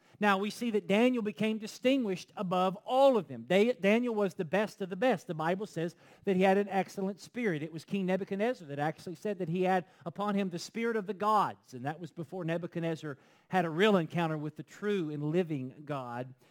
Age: 40-59